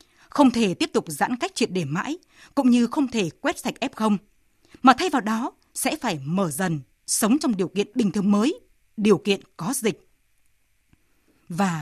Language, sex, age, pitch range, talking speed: Vietnamese, female, 20-39, 195-265 Hz, 185 wpm